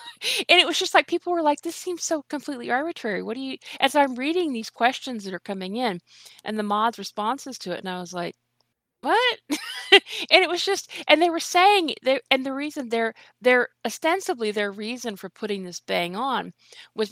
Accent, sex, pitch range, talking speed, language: American, female, 180-250 Hz, 205 wpm, English